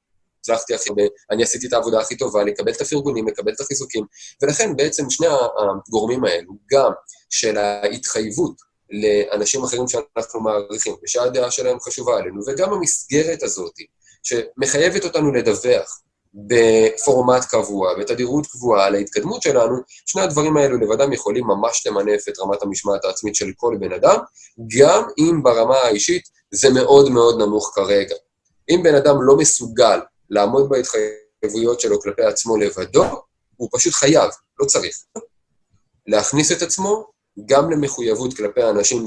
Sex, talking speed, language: male, 135 wpm, Hebrew